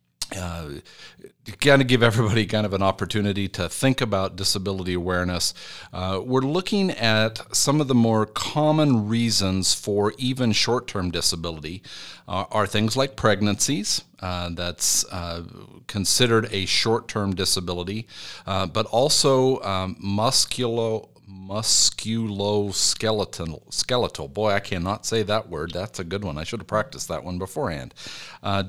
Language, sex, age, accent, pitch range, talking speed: English, male, 50-69, American, 95-120 Hz, 135 wpm